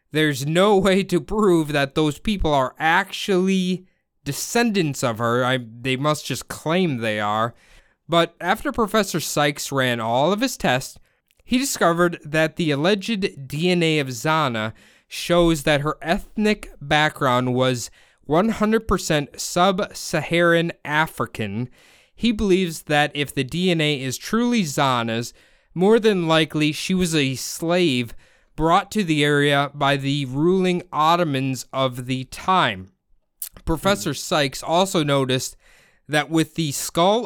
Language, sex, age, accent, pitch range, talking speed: English, male, 20-39, American, 135-180 Hz, 130 wpm